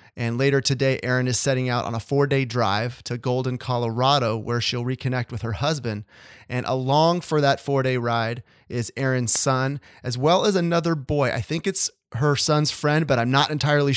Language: English